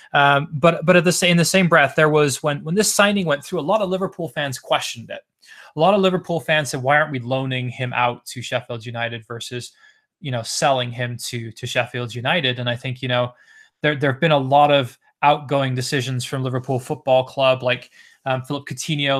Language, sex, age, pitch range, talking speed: English, male, 20-39, 125-150 Hz, 220 wpm